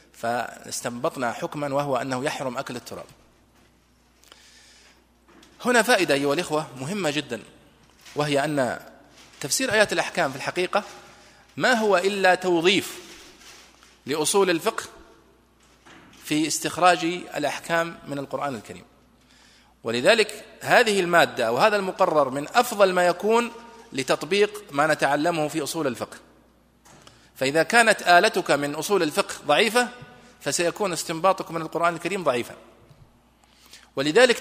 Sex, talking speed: male, 105 wpm